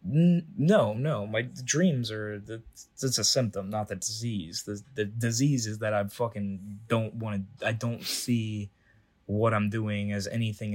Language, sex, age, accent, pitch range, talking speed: English, male, 20-39, American, 100-115 Hz, 165 wpm